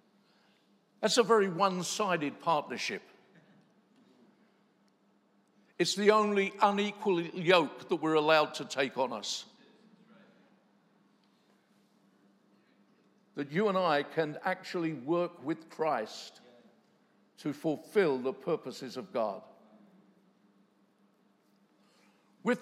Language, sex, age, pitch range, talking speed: English, male, 60-79, 155-215 Hz, 90 wpm